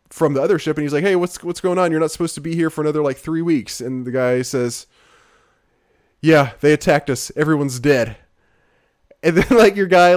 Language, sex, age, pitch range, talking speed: English, male, 20-39, 145-205 Hz, 225 wpm